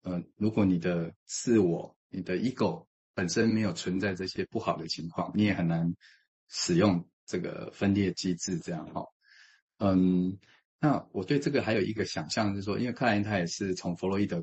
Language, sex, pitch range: Chinese, male, 90-105 Hz